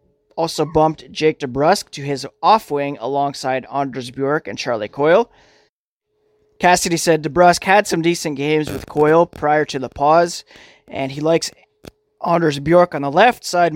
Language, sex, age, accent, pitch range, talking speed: English, male, 20-39, American, 140-175 Hz, 155 wpm